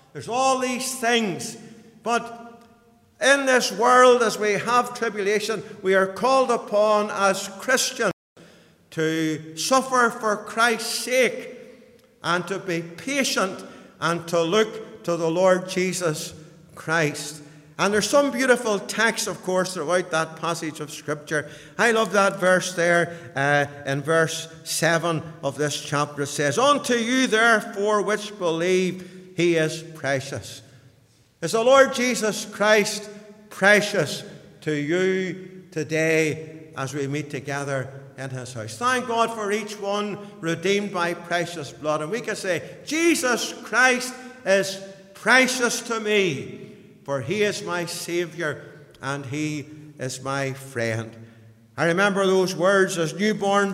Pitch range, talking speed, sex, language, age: 160-220 Hz, 135 wpm, male, English, 60-79